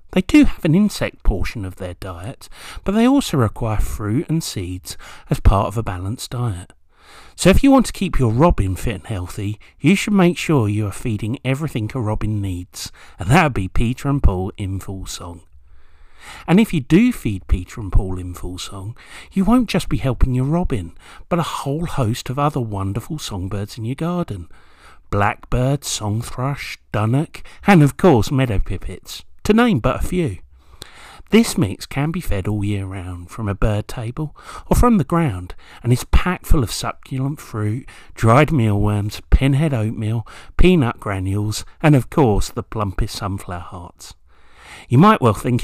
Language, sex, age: English, male, 50-69